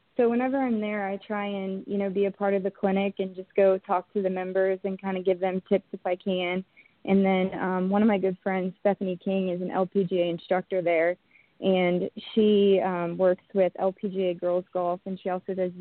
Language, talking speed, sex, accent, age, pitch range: English, 220 wpm, female, American, 20-39, 180-200 Hz